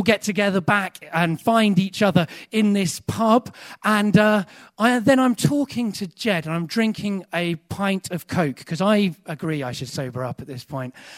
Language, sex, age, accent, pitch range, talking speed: English, male, 40-59, British, 145-210 Hz, 190 wpm